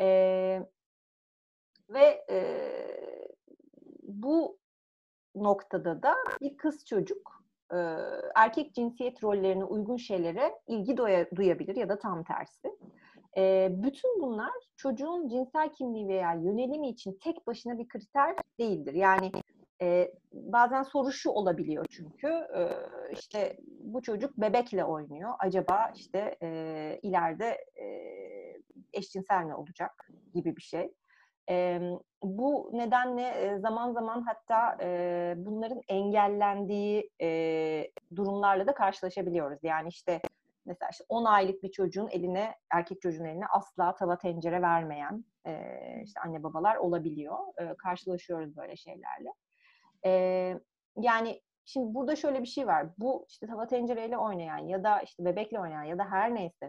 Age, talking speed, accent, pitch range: 40-59, 110 wpm, native, 180-260 Hz